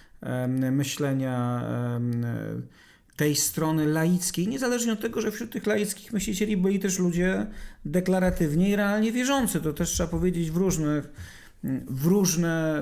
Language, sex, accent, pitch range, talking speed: Polish, male, native, 120-170 Hz, 125 wpm